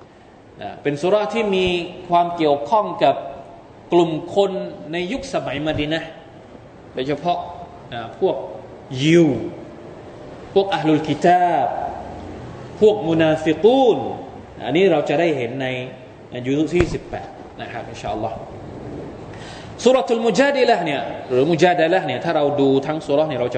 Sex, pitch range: male, 130-180 Hz